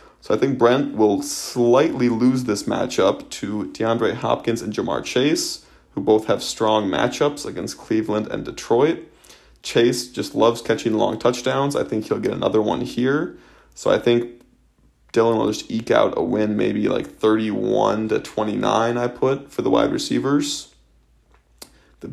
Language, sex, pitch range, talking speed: English, male, 110-125 Hz, 160 wpm